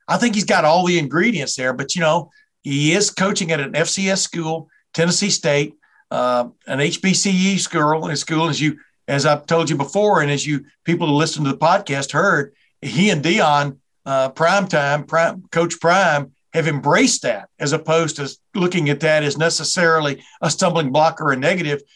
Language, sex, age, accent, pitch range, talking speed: English, male, 60-79, American, 145-185 Hz, 185 wpm